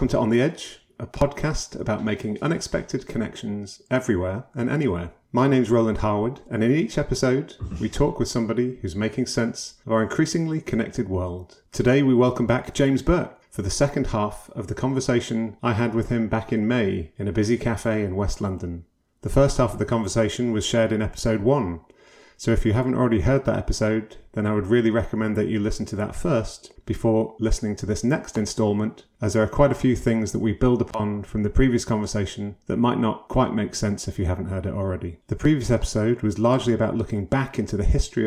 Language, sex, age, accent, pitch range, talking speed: English, male, 30-49, British, 105-120 Hz, 210 wpm